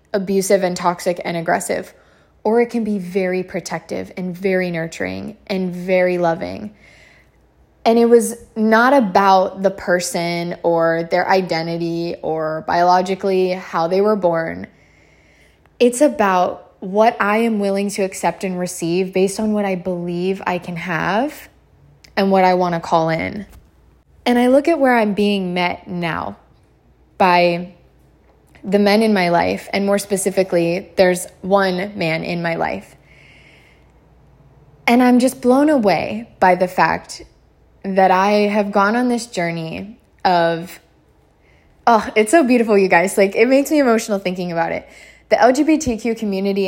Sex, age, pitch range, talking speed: female, 20-39, 175-210 Hz, 150 wpm